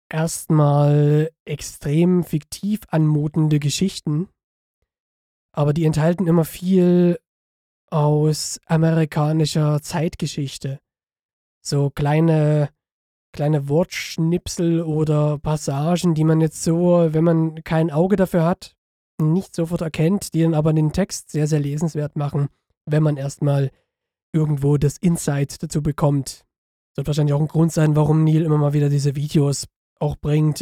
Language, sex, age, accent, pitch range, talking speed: German, male, 20-39, German, 145-165 Hz, 125 wpm